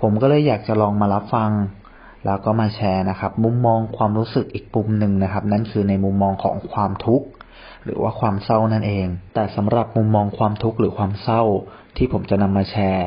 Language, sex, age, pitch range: Thai, male, 30-49, 95-110 Hz